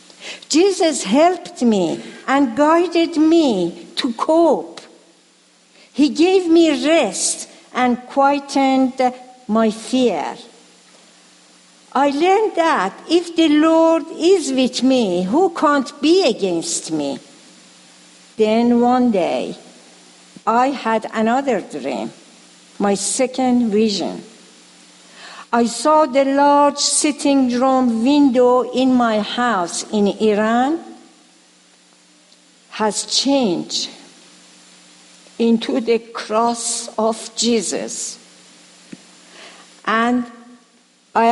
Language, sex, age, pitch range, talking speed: English, female, 60-79, 205-285 Hz, 90 wpm